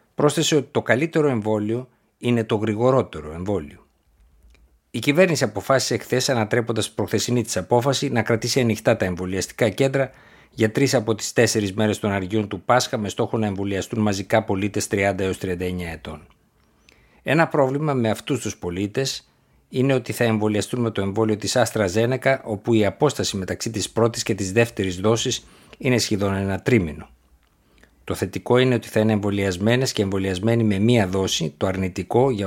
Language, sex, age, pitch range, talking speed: Greek, male, 60-79, 95-125 Hz, 155 wpm